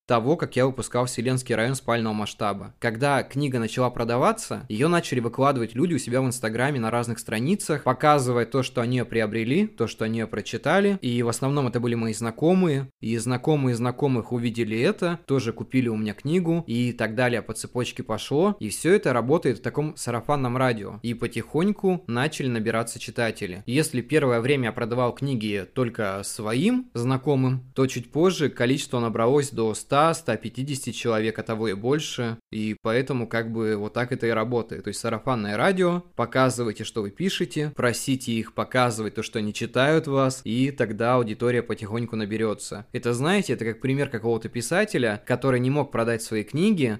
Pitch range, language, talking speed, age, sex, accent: 115-140 Hz, Russian, 170 wpm, 20-39, male, native